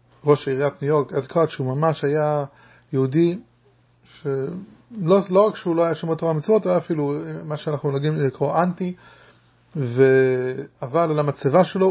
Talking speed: 155 wpm